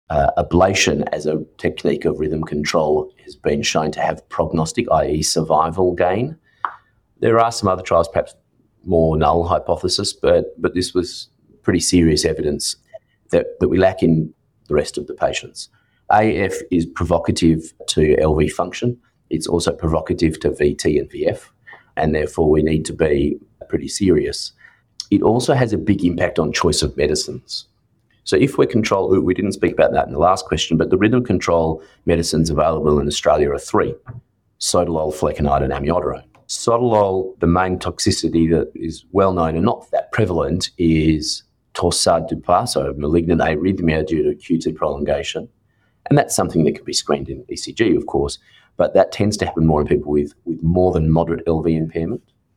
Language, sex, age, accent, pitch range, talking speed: English, male, 30-49, Australian, 80-95 Hz, 170 wpm